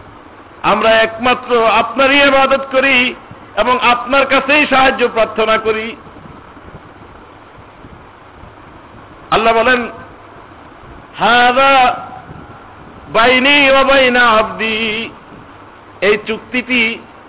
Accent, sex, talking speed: native, male, 40 wpm